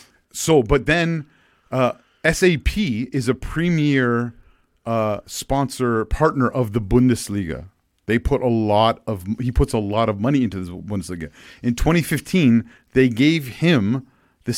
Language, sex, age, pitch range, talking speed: English, male, 40-59, 105-130 Hz, 140 wpm